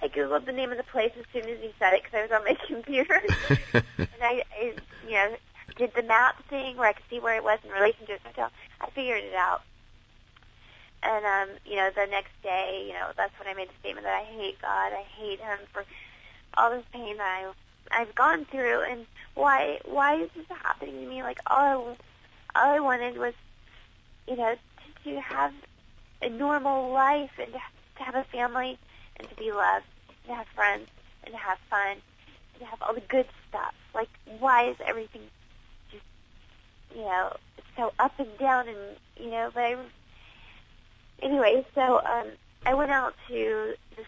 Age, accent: 40-59, American